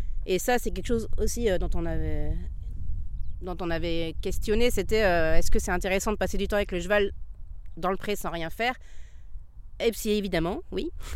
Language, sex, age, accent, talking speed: French, female, 30-49, French, 205 wpm